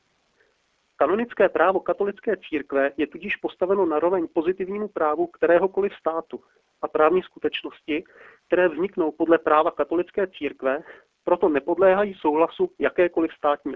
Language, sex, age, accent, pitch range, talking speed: Czech, male, 40-59, native, 150-185 Hz, 115 wpm